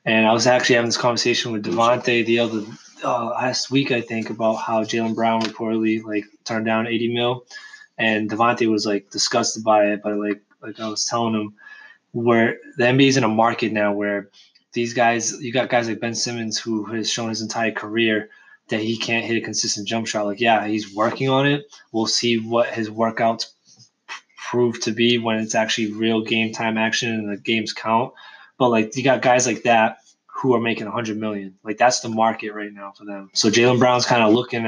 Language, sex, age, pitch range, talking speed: English, male, 20-39, 110-125 Hz, 215 wpm